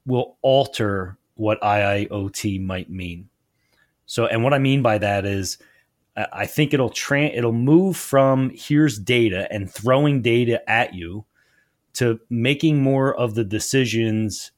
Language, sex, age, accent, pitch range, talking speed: English, male, 30-49, American, 100-120 Hz, 150 wpm